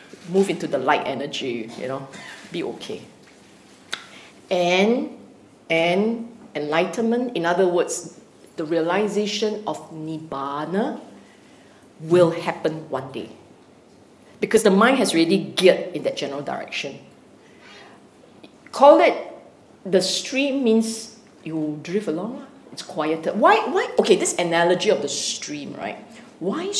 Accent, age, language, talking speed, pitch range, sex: Malaysian, 50-69, English, 120 wpm, 170-230 Hz, female